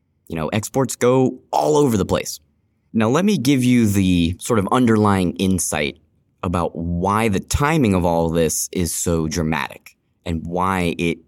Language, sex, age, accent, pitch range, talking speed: English, male, 20-39, American, 85-110 Hz, 165 wpm